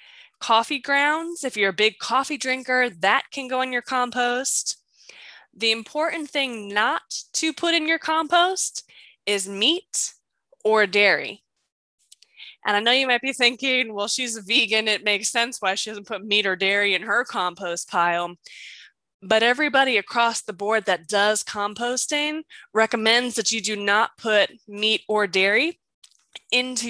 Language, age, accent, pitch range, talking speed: English, 10-29, American, 210-280 Hz, 155 wpm